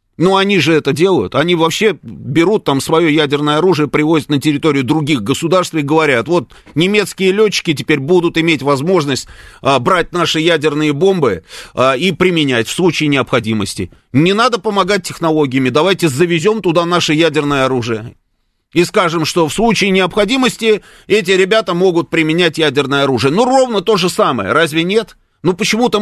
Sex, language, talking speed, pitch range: male, Russian, 150 wpm, 145-195 Hz